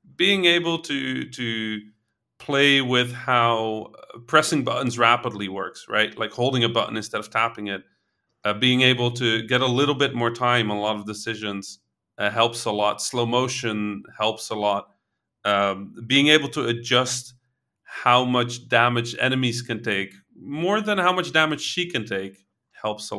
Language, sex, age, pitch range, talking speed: English, male, 30-49, 110-140 Hz, 170 wpm